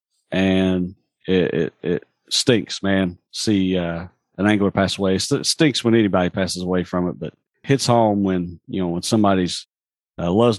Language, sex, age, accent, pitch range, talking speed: English, male, 40-59, American, 95-120 Hz, 170 wpm